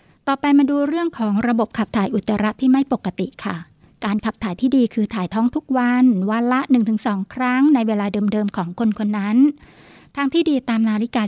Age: 60-79